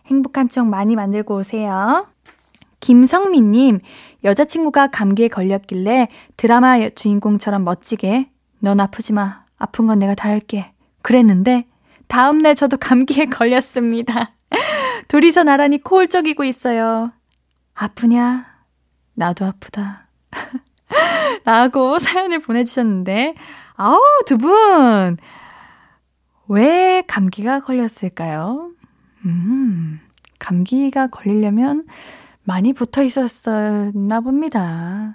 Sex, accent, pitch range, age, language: female, native, 210-285 Hz, 20-39, Korean